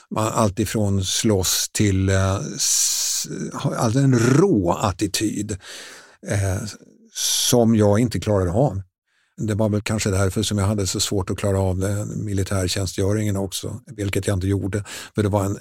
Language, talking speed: Swedish, 145 wpm